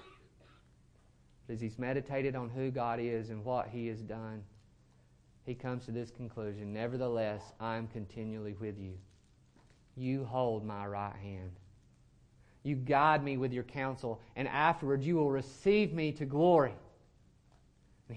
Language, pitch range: English, 115-170 Hz